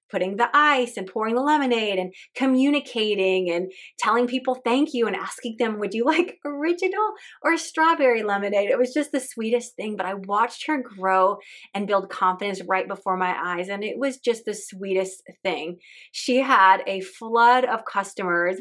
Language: English